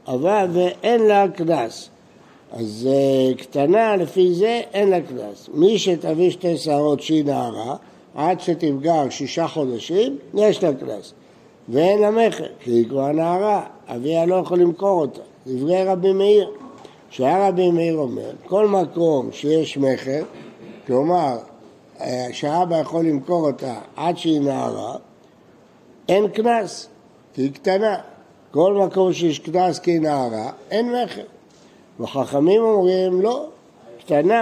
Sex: male